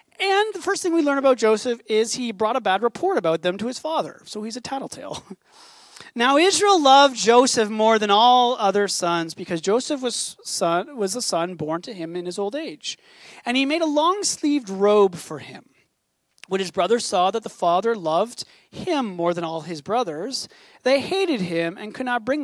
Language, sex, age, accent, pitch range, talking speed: English, male, 30-49, American, 190-295 Hz, 200 wpm